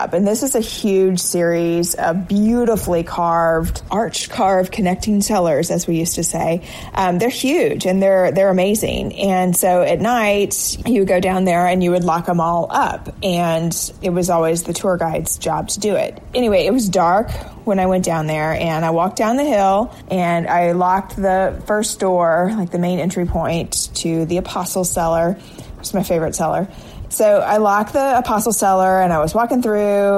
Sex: female